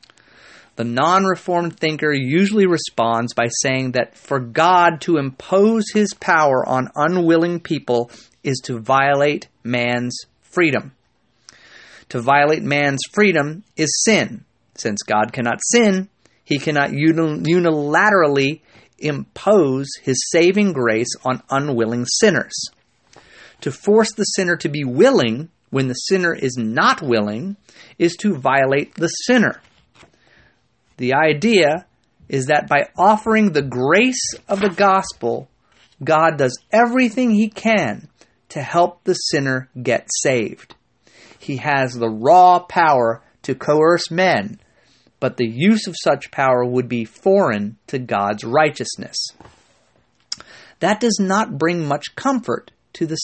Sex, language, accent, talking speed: male, English, American, 125 wpm